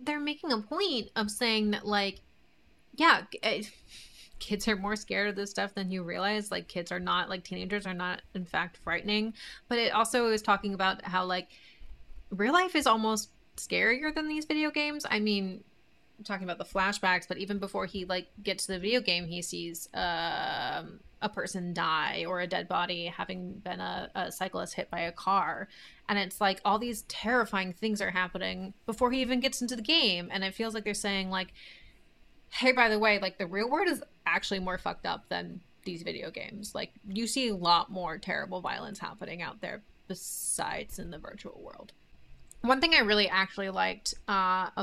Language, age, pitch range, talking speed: English, 20-39, 185-250 Hz, 195 wpm